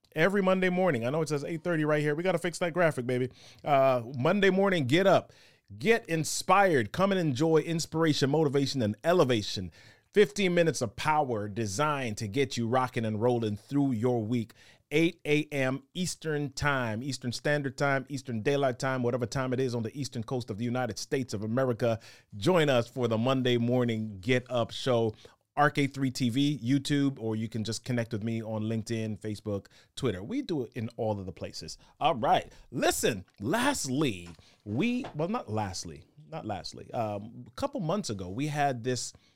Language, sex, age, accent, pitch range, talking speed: English, male, 30-49, American, 110-150 Hz, 180 wpm